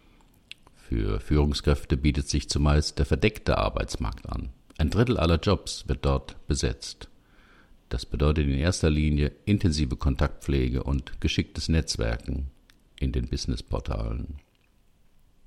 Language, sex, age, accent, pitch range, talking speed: German, male, 50-69, German, 70-90 Hz, 115 wpm